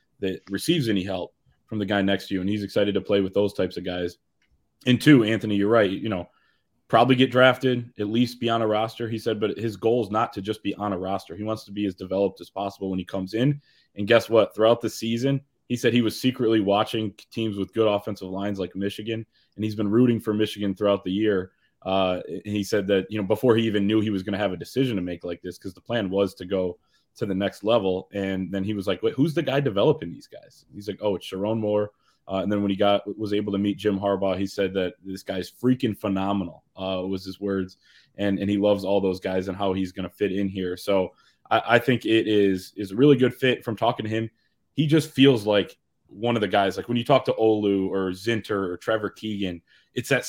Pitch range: 95-115 Hz